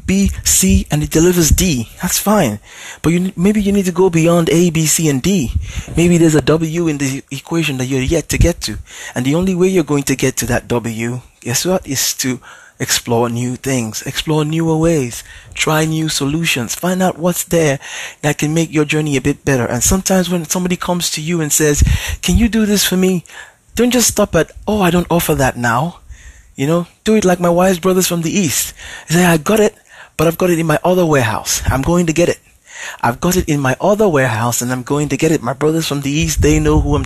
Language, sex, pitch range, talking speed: English, male, 135-180 Hz, 235 wpm